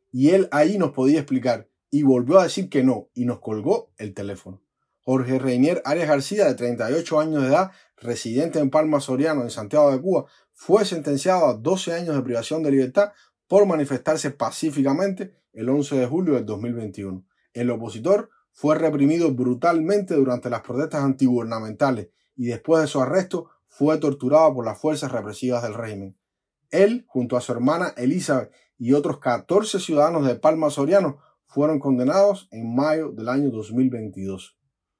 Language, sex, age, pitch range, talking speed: Spanish, male, 30-49, 120-160 Hz, 160 wpm